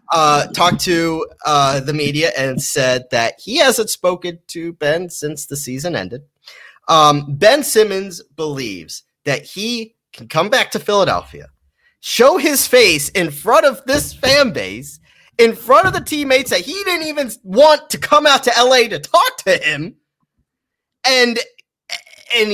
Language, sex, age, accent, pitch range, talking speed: English, male, 30-49, American, 155-260 Hz, 155 wpm